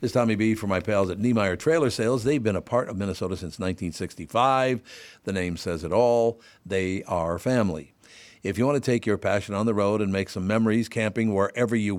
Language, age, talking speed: English, 60-79, 220 wpm